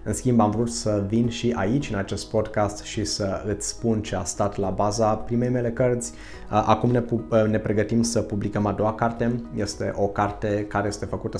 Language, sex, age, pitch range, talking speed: Romanian, male, 20-39, 100-115 Hz, 200 wpm